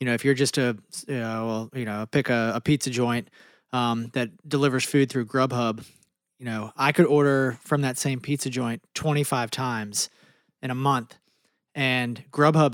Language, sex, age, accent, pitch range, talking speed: English, male, 30-49, American, 120-145 Hz, 185 wpm